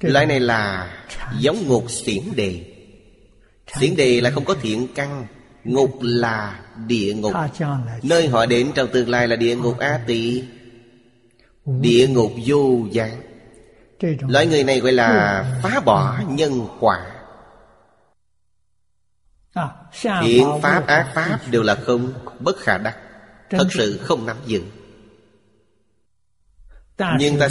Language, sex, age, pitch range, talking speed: Vietnamese, male, 30-49, 105-135 Hz, 130 wpm